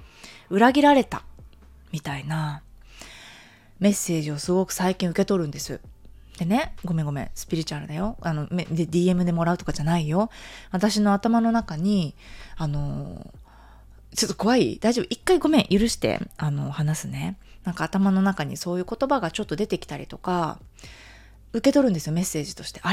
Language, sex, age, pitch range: Japanese, female, 20-39, 155-210 Hz